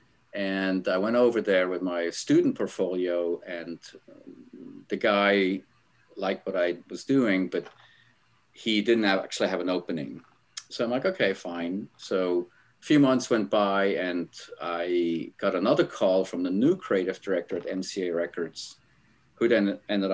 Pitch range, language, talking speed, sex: 90-110 Hz, English, 155 wpm, male